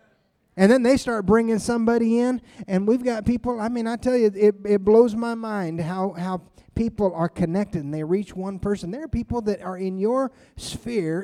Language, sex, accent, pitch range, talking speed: English, male, American, 180-235 Hz, 210 wpm